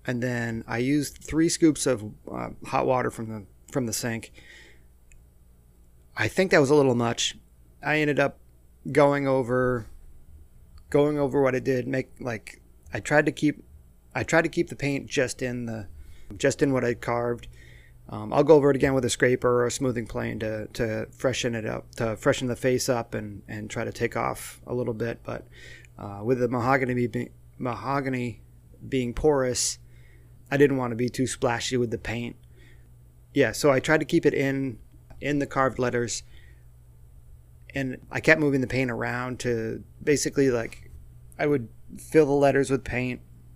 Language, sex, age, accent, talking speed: English, male, 30-49, American, 180 wpm